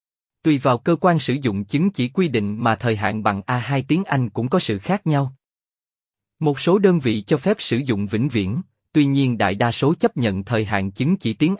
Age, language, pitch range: 20-39, Vietnamese, 115-160 Hz